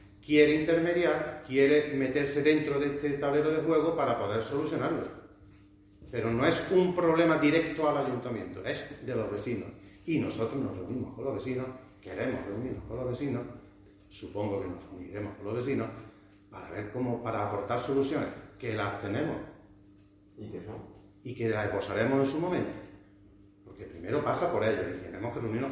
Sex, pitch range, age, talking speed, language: male, 105-145 Hz, 40-59, 160 wpm, Spanish